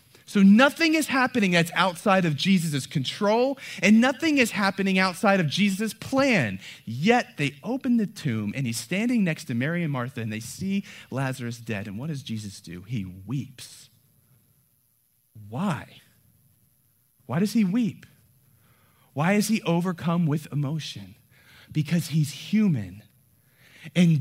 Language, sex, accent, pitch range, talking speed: English, male, American, 130-200 Hz, 140 wpm